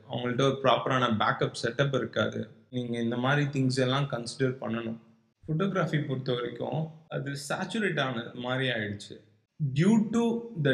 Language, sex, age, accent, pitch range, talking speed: Tamil, male, 20-39, native, 115-140 Hz, 135 wpm